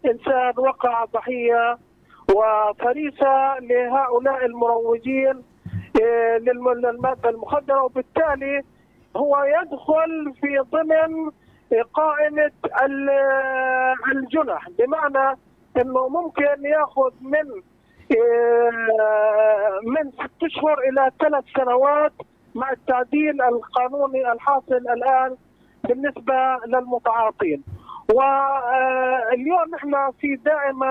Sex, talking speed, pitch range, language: male, 70 wpm, 235-275 Hz, Arabic